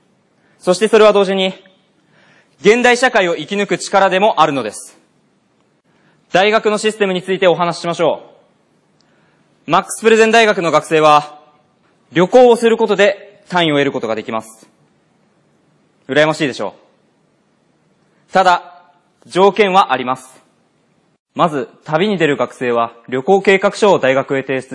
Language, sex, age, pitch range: Japanese, male, 20-39, 145-195 Hz